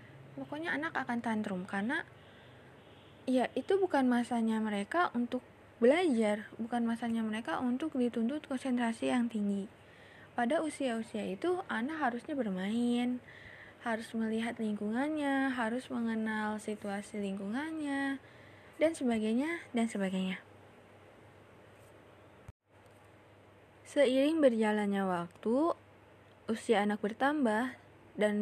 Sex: female